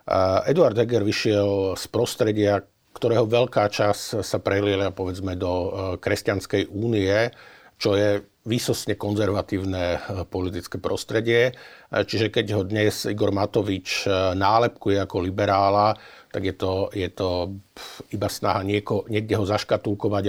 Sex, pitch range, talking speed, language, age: male, 95-105 Hz, 120 wpm, Slovak, 50-69